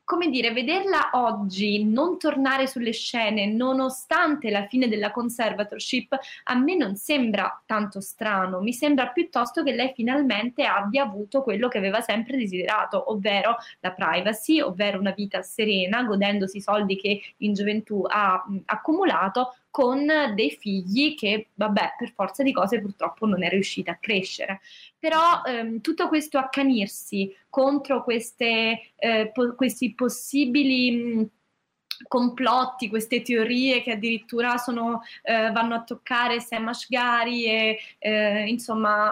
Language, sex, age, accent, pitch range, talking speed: Italian, female, 20-39, native, 205-255 Hz, 130 wpm